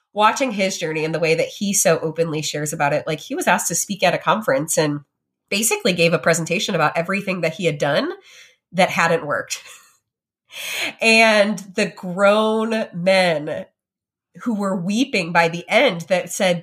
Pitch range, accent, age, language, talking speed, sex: 170-235 Hz, American, 30-49, English, 175 wpm, female